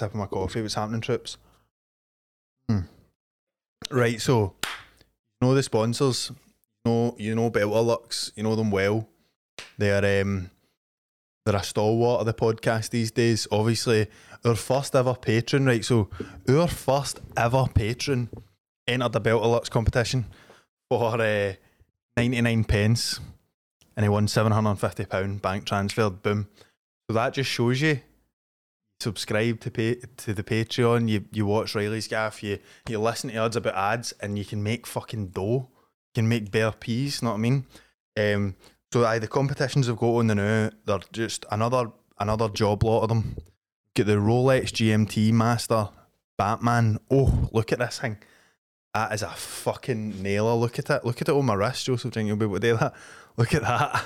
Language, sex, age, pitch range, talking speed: English, male, 20-39, 105-125 Hz, 170 wpm